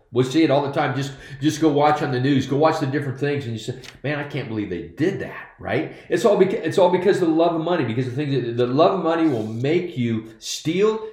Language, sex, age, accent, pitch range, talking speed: English, male, 50-69, American, 125-165 Hz, 285 wpm